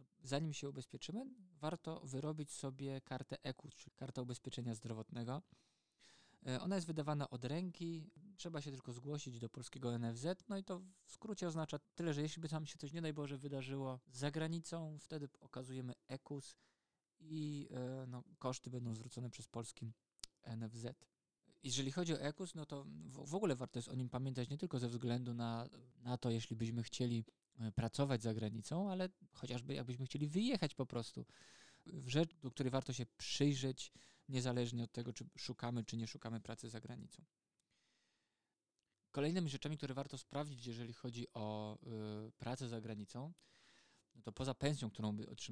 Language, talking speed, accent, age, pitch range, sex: Polish, 165 wpm, native, 20-39, 120-150 Hz, male